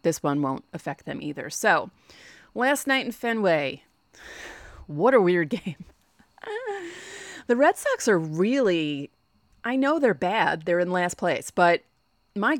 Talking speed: 145 wpm